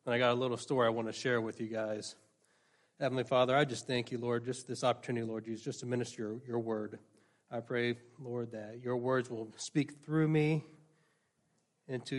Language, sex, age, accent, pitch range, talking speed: English, male, 40-59, American, 115-135 Hz, 205 wpm